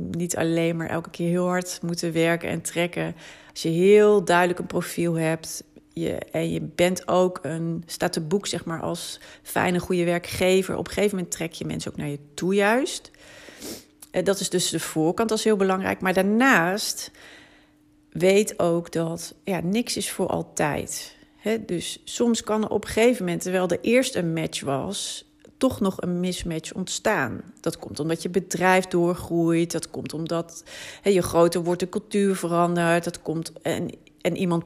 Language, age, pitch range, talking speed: Dutch, 40-59, 160-190 Hz, 170 wpm